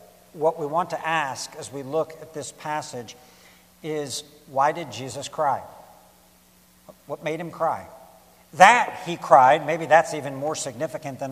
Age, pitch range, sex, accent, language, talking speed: 60-79, 140-185 Hz, male, American, English, 155 wpm